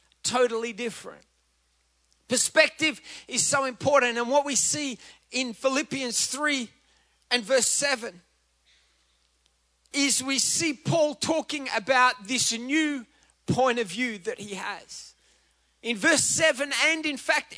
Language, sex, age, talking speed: English, male, 30-49, 125 wpm